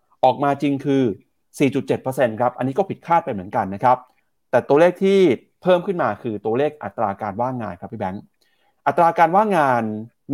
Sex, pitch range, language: male, 110-155 Hz, Thai